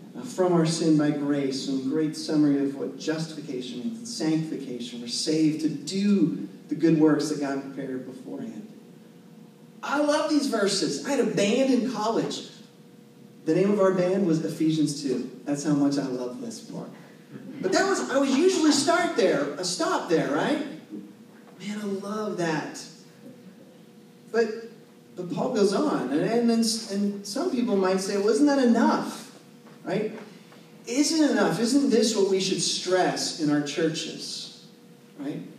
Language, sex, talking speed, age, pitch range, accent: English, male, 160 wpm, 30-49, 155-230 Hz, American